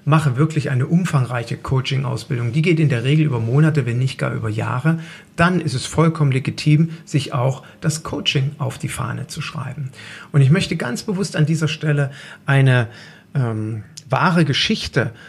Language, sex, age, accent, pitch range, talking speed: German, male, 40-59, German, 130-160 Hz, 170 wpm